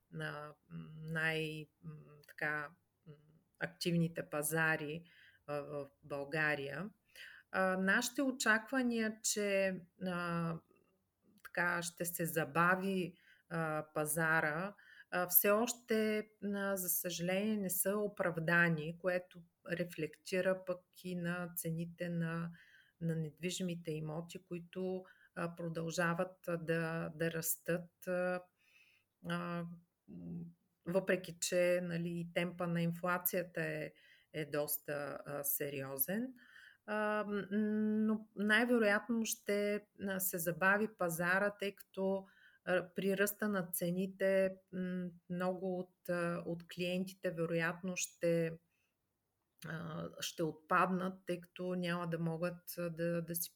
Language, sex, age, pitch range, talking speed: Bulgarian, female, 30-49, 165-190 Hz, 95 wpm